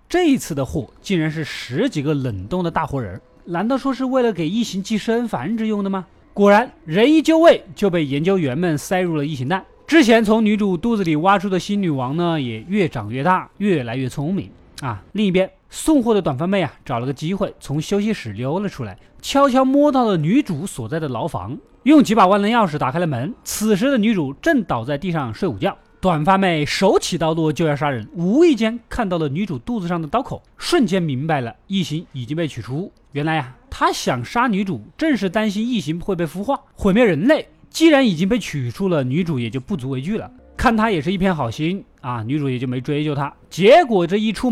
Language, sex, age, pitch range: Chinese, male, 20-39, 145-220 Hz